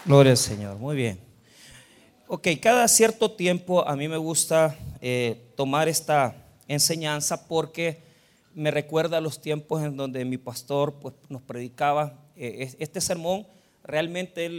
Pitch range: 140-175 Hz